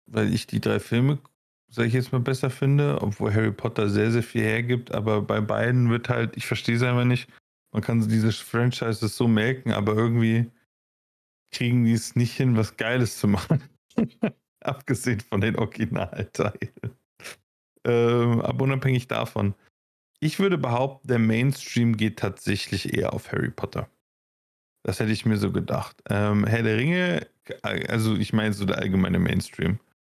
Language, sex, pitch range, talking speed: German, male, 105-125 Hz, 155 wpm